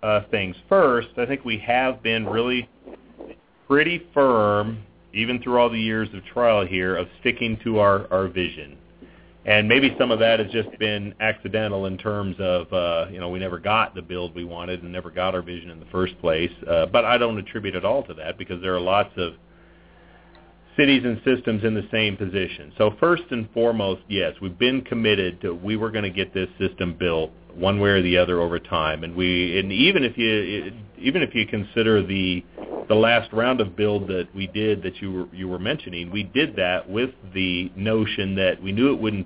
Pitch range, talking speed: 90-110 Hz, 210 wpm